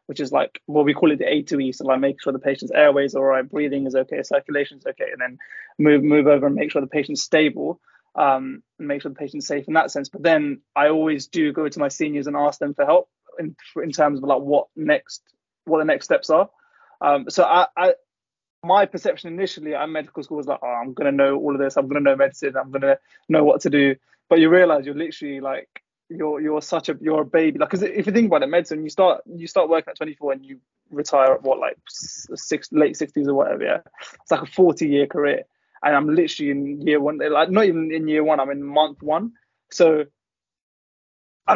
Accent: British